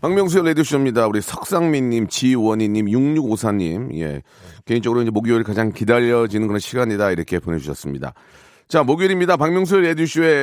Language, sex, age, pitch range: Korean, male, 40-59, 120-165 Hz